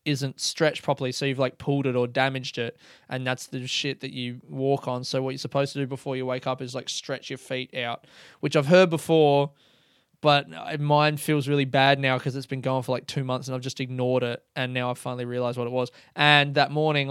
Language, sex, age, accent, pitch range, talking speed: English, male, 20-39, Australian, 130-155 Hz, 240 wpm